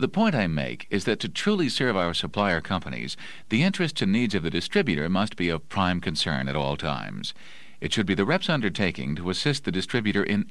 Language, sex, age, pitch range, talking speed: English, male, 50-69, 85-135 Hz, 215 wpm